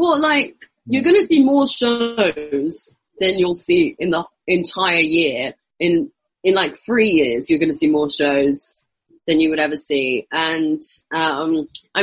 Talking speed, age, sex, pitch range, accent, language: 170 wpm, 30-49, female, 150-230 Hz, British, English